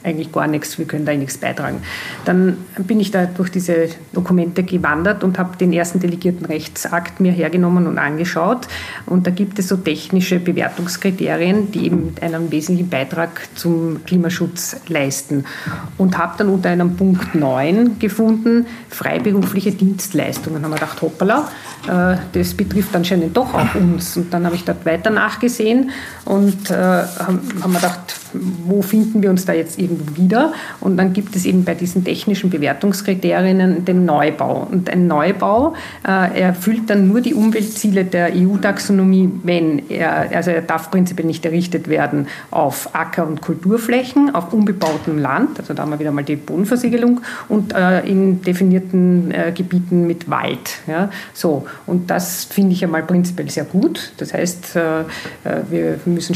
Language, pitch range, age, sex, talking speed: German, 165-195 Hz, 50-69, female, 160 wpm